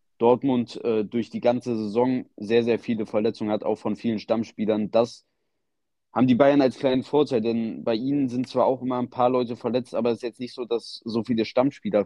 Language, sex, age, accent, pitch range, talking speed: German, male, 20-39, German, 105-125 Hz, 215 wpm